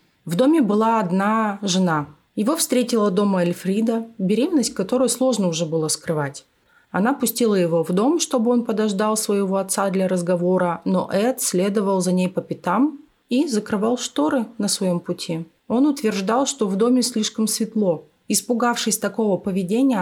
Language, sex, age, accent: Russian, female, 30-49, native